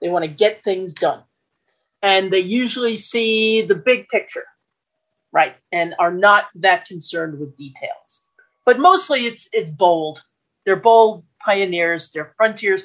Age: 40-59